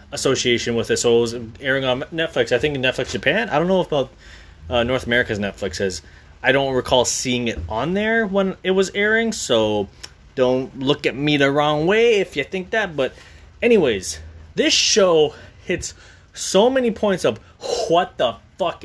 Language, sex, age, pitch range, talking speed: English, male, 20-39, 120-185 Hz, 185 wpm